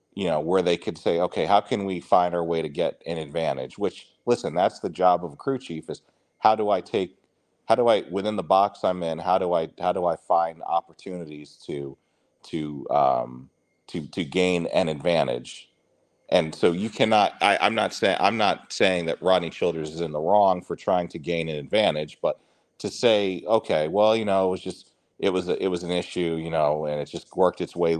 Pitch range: 80-95 Hz